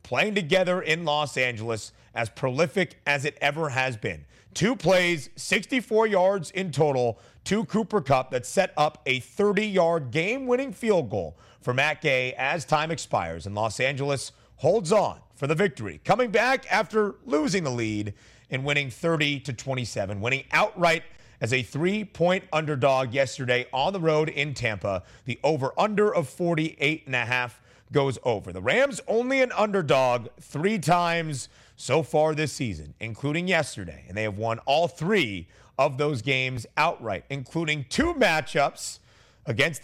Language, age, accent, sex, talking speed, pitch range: English, 30-49, American, male, 150 wpm, 125-175 Hz